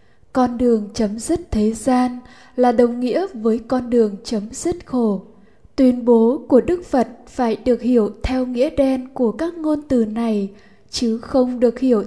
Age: 10-29